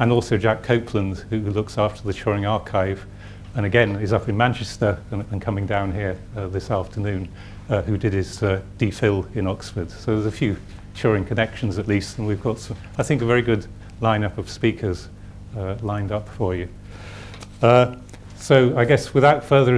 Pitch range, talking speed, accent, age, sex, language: 100-115 Hz, 190 wpm, British, 40-59, male, English